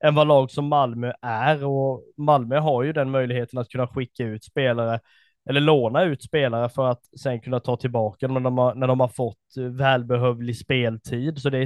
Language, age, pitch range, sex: Swedish, 20-39, 120-150 Hz, male